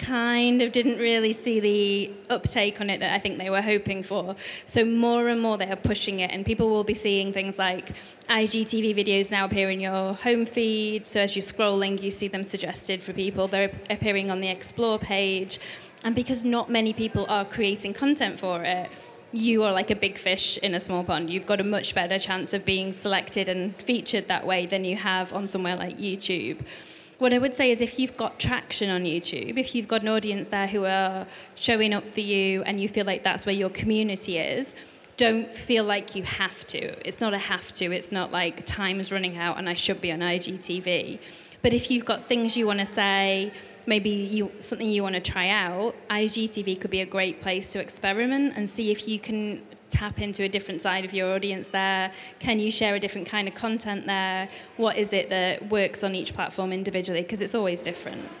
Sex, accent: female, British